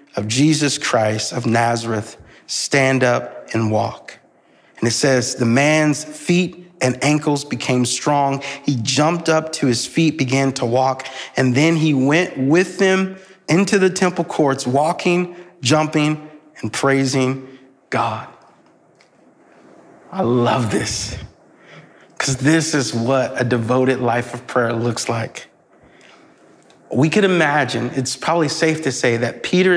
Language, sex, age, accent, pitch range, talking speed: English, male, 40-59, American, 125-155 Hz, 135 wpm